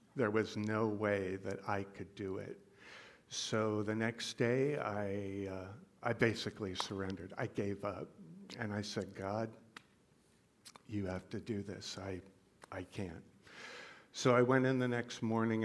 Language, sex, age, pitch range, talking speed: English, male, 50-69, 100-125 Hz, 155 wpm